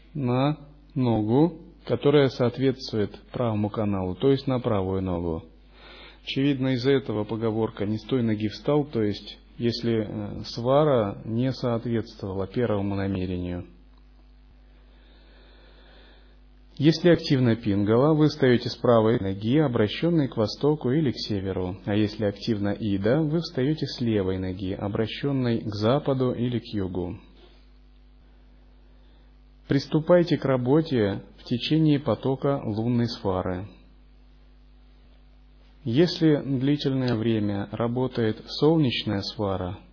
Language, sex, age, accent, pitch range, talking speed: Russian, male, 30-49, native, 100-135 Hz, 105 wpm